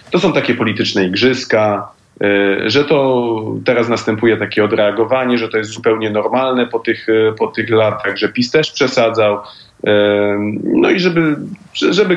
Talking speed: 145 wpm